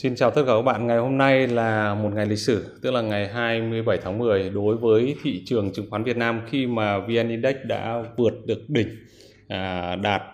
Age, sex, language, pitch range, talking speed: 20-39, male, Vietnamese, 100-120 Hz, 215 wpm